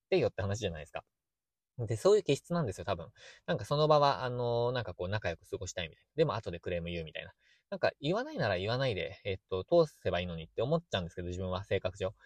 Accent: native